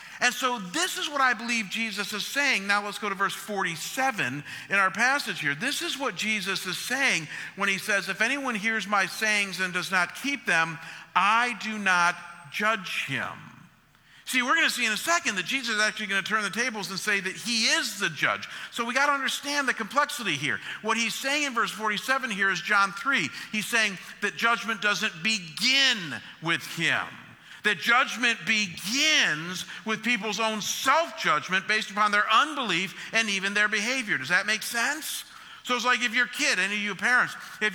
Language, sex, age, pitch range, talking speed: English, male, 50-69, 195-255 Hz, 190 wpm